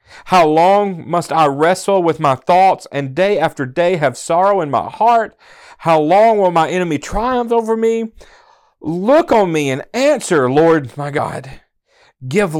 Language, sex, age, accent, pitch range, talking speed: English, male, 40-59, American, 130-190 Hz, 160 wpm